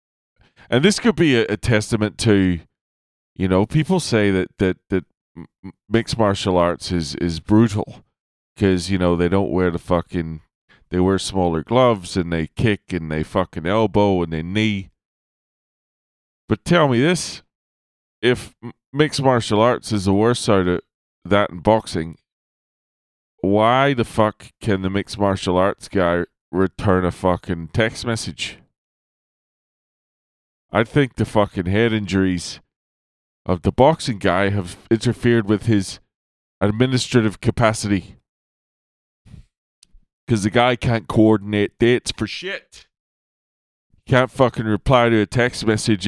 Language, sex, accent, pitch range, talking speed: English, male, American, 90-115 Hz, 135 wpm